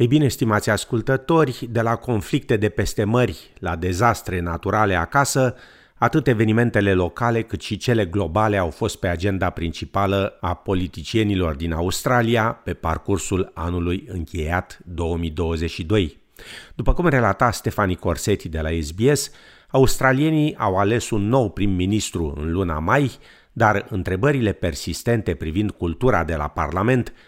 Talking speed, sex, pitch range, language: 130 wpm, male, 85-120 Hz, Romanian